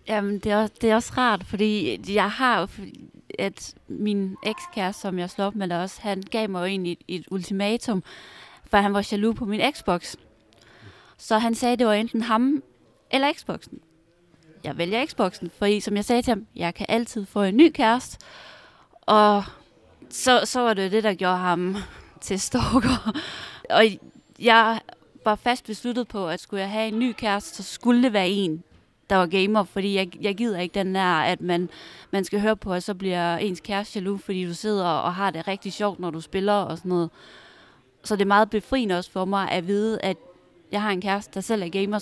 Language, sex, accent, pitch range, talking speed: Danish, female, native, 185-220 Hz, 205 wpm